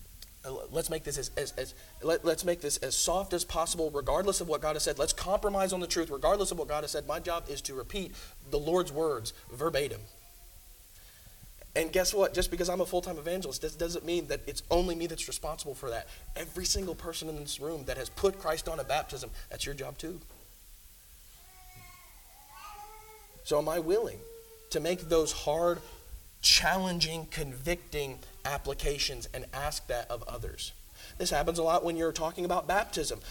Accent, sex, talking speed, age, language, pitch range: American, male, 185 wpm, 30-49, English, 140-180 Hz